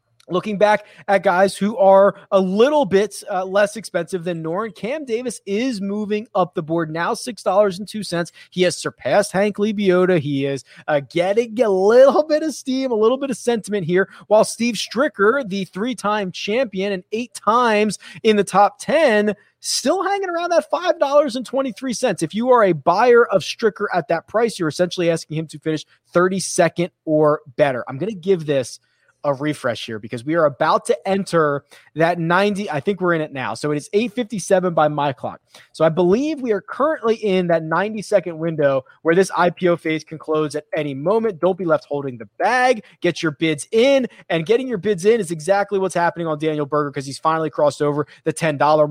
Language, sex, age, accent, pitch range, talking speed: English, male, 30-49, American, 155-210 Hz, 195 wpm